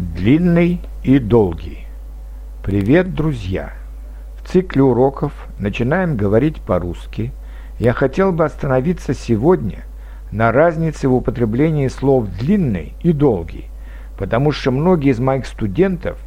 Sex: male